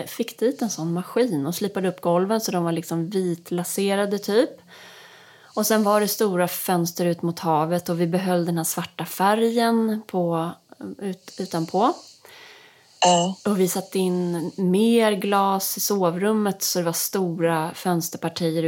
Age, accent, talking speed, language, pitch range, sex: 30-49, native, 150 wpm, Swedish, 170-215 Hz, female